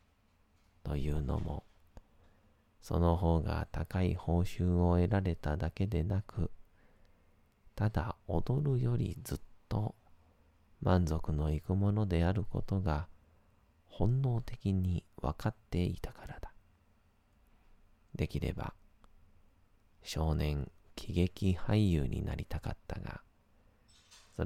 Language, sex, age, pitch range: Japanese, male, 40-59, 80-100 Hz